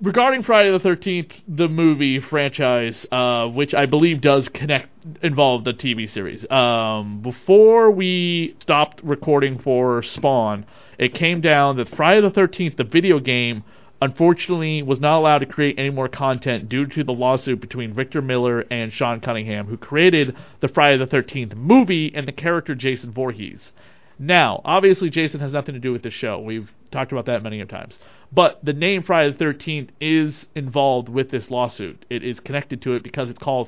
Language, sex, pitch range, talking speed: English, male, 125-155 Hz, 180 wpm